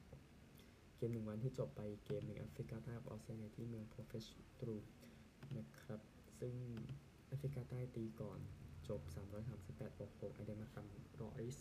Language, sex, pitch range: Thai, male, 105-130 Hz